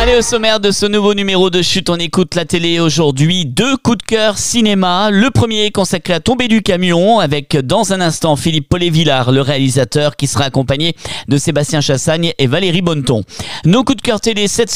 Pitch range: 150-210 Hz